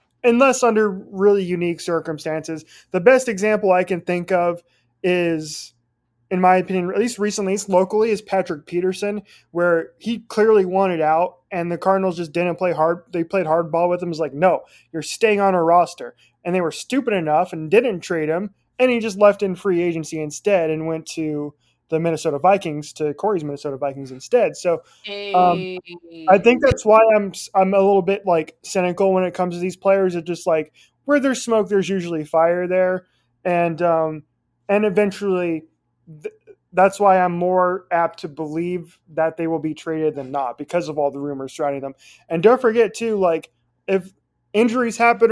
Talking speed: 185 wpm